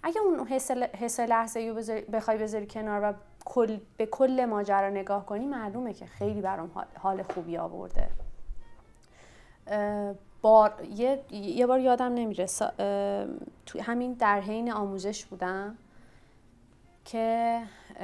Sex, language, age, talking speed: female, Persian, 30-49, 115 wpm